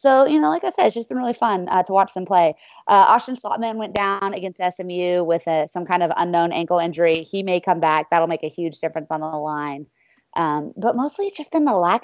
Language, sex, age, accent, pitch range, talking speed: English, female, 20-39, American, 165-200 Hz, 255 wpm